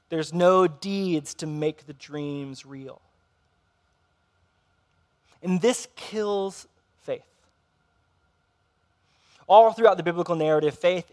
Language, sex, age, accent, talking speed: English, male, 20-39, American, 95 wpm